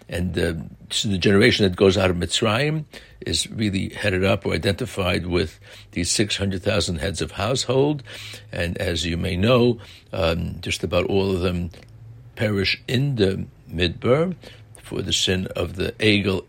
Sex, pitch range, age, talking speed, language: male, 90-120 Hz, 60-79, 160 wpm, English